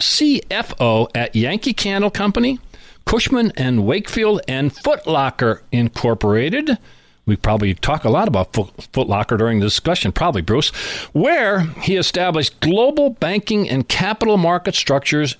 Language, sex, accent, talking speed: English, male, American, 140 wpm